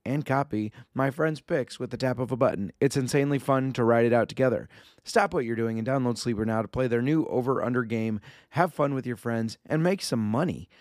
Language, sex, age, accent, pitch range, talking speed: English, male, 30-49, American, 110-135 Hz, 240 wpm